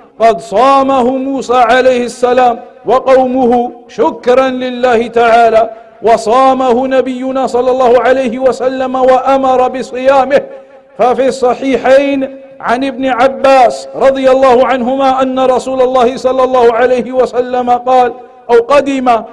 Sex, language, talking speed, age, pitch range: male, English, 110 wpm, 50-69, 240-260 Hz